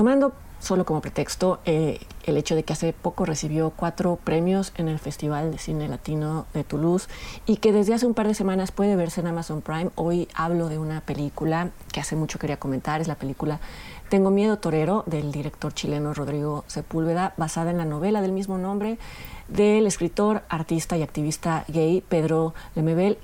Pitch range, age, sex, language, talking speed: 155-200 Hz, 40-59, female, Spanish, 185 wpm